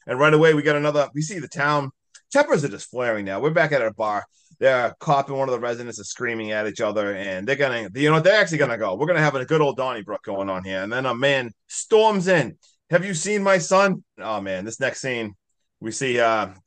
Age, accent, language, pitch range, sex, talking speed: 30-49, American, English, 100-140 Hz, male, 255 wpm